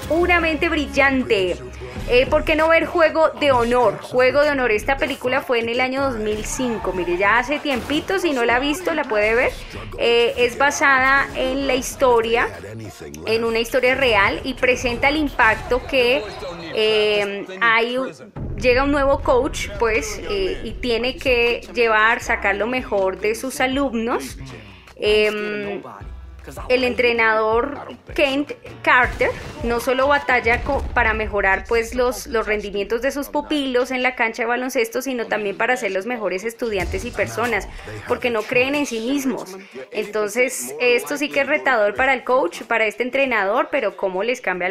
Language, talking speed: Spanish, 160 wpm